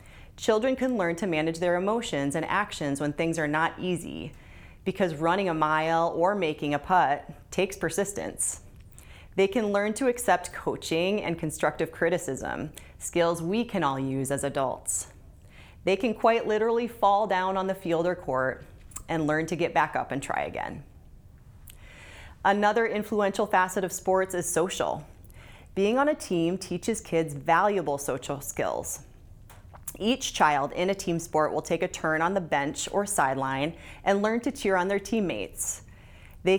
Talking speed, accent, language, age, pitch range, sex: 160 wpm, American, English, 30-49, 150-200 Hz, female